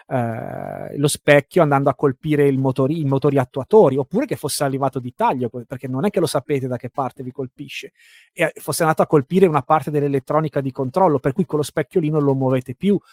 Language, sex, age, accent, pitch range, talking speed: Italian, male, 30-49, native, 135-170 Hz, 215 wpm